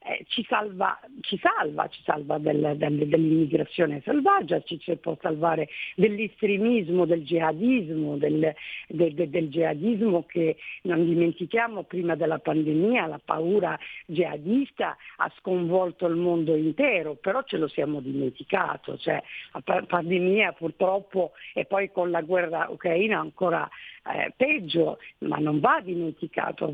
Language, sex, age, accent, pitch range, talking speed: Italian, female, 50-69, native, 170-225 Hz, 135 wpm